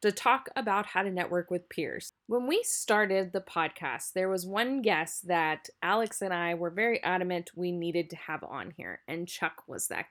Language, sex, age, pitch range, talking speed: English, female, 20-39, 175-255 Hz, 200 wpm